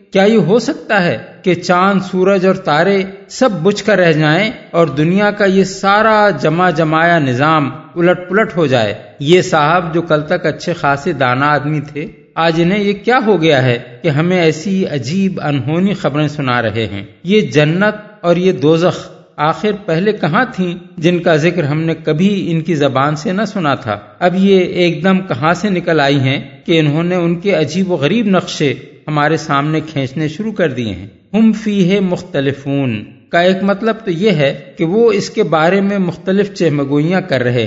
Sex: male